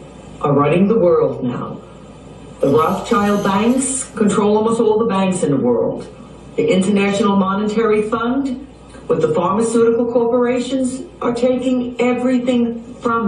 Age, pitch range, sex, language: 60-79, 155-230 Hz, female, English